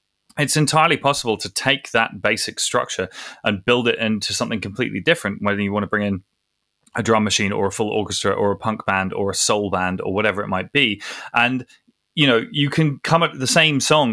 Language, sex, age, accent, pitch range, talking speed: English, male, 20-39, British, 100-140 Hz, 215 wpm